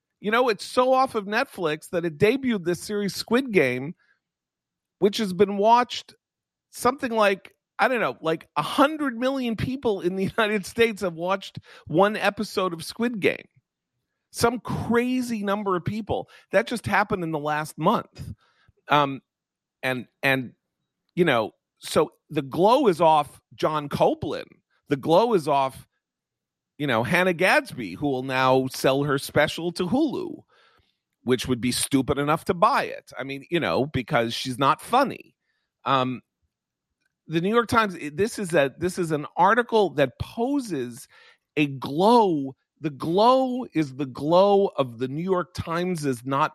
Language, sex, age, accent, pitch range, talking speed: English, male, 40-59, American, 135-210 Hz, 155 wpm